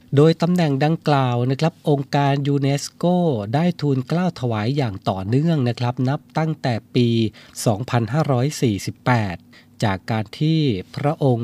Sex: male